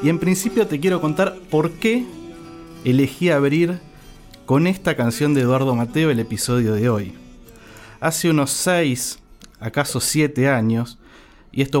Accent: Argentinian